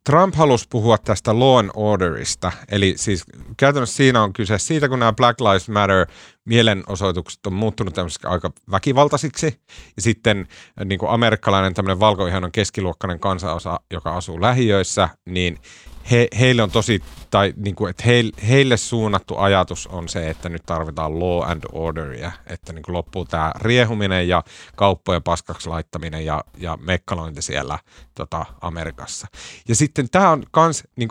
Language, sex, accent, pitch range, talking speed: Finnish, male, native, 90-125 Hz, 145 wpm